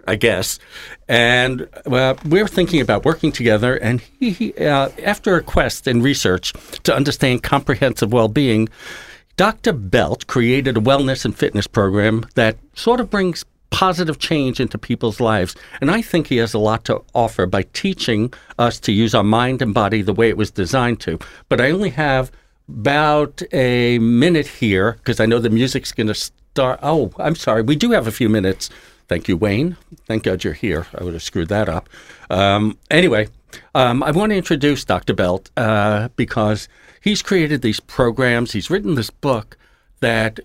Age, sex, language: 60-79, male, English